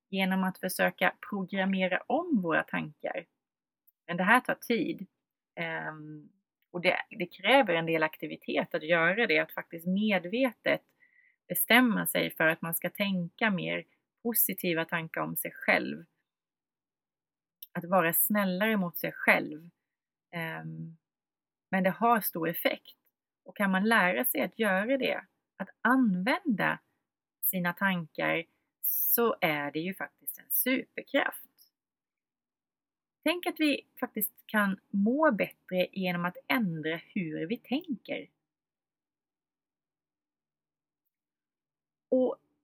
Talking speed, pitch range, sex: 115 wpm, 165-235 Hz, female